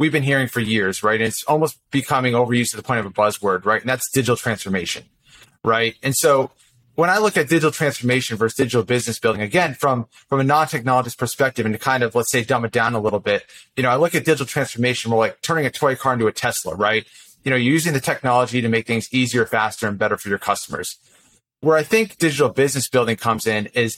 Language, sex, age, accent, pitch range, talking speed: English, male, 30-49, American, 115-145 Hz, 240 wpm